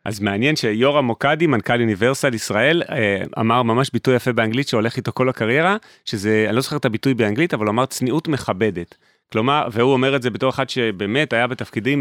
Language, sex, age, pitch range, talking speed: Hebrew, male, 30-49, 105-130 Hz, 190 wpm